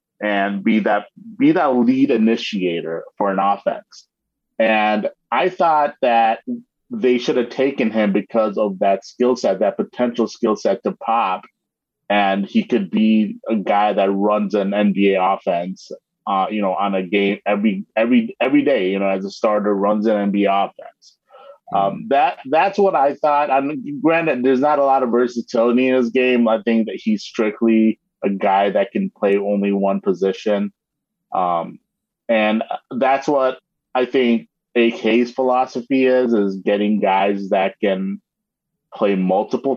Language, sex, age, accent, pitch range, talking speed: English, male, 30-49, American, 100-135 Hz, 160 wpm